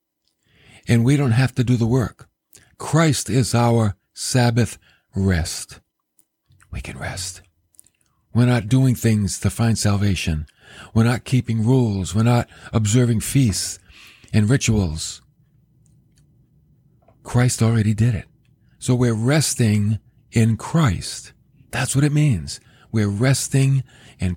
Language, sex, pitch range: English, male, 110-145 Hz